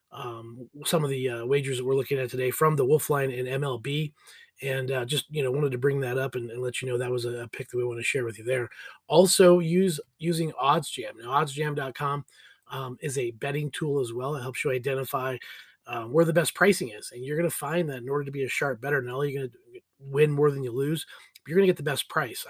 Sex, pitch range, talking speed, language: male, 125-150 Hz, 265 wpm, English